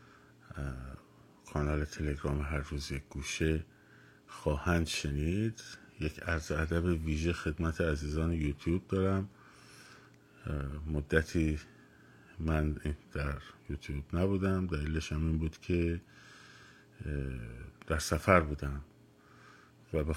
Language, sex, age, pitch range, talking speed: Persian, male, 50-69, 75-85 Hz, 90 wpm